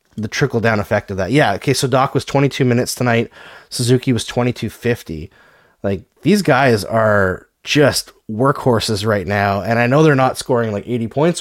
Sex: male